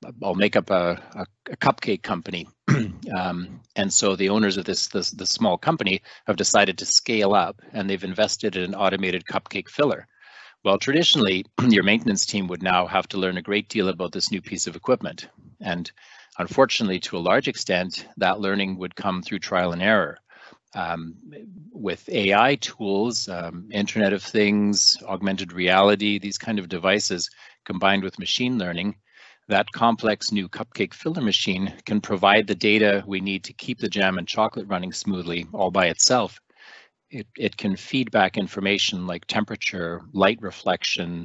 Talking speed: 170 wpm